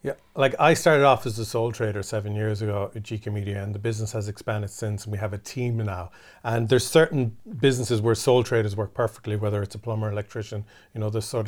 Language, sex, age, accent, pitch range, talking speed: English, male, 40-59, Irish, 110-125 Hz, 235 wpm